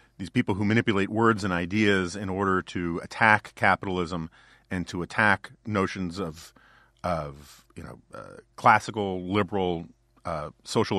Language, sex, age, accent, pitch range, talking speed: English, male, 40-59, American, 90-115 Hz, 135 wpm